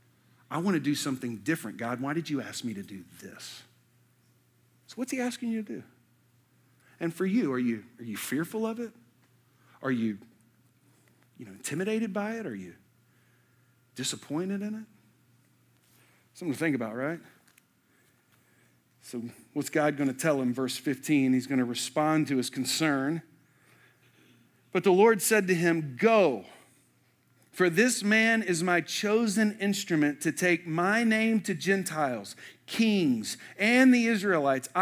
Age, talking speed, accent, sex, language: 50-69, 155 wpm, American, male, English